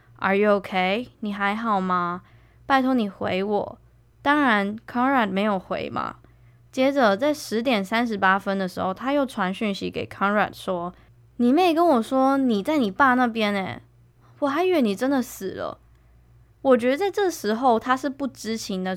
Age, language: 10-29, Chinese